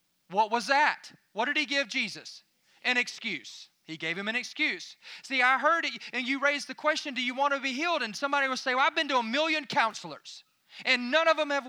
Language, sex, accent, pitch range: English, male, American, 230-290 Hz